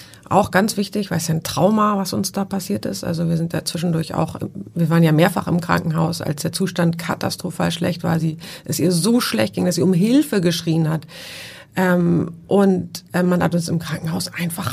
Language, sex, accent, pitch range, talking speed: German, female, German, 170-195 Hz, 215 wpm